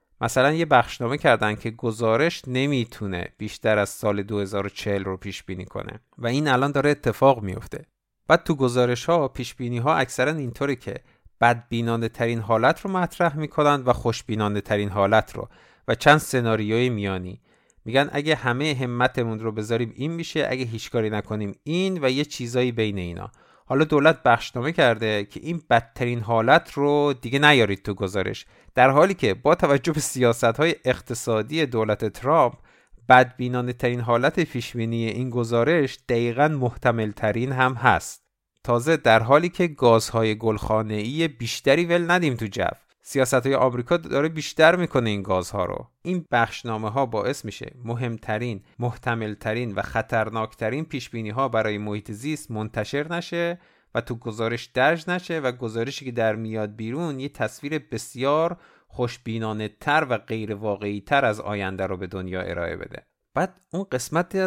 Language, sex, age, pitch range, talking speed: Persian, male, 50-69, 110-145 Hz, 150 wpm